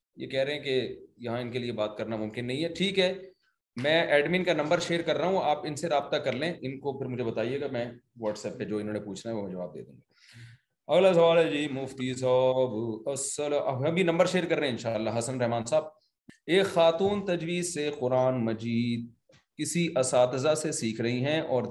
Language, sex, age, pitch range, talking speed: Urdu, male, 30-49, 120-160 Hz, 190 wpm